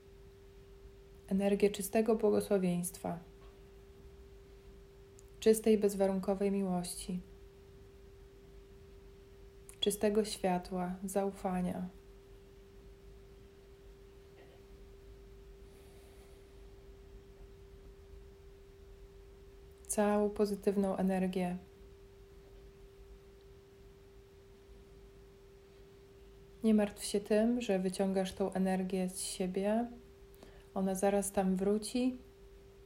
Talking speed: 45 wpm